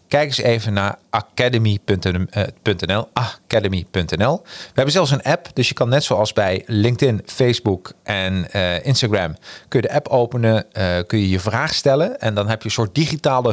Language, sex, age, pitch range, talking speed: Dutch, male, 40-59, 95-130 Hz, 175 wpm